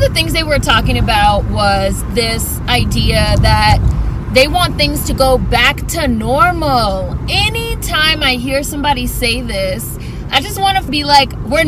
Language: English